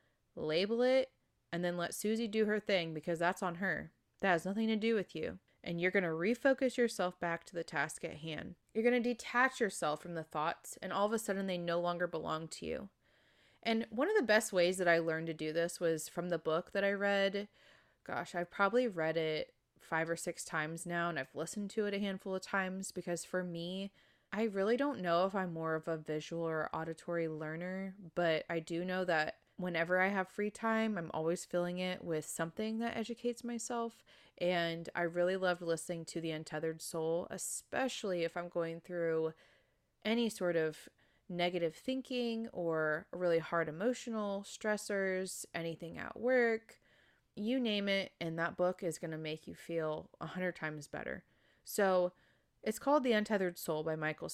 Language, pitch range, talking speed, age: English, 165-210 Hz, 190 wpm, 20-39